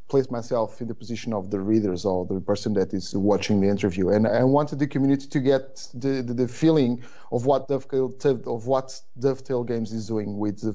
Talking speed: 195 wpm